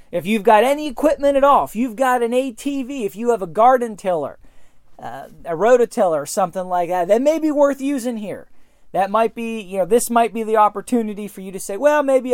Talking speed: 230 wpm